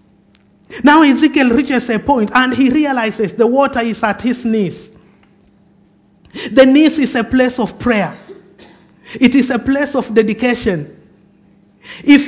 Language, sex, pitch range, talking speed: English, male, 185-250 Hz, 135 wpm